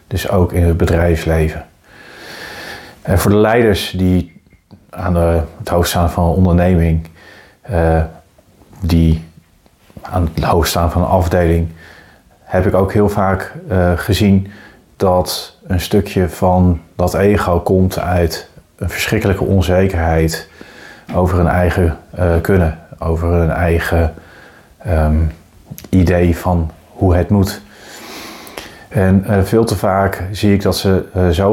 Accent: Dutch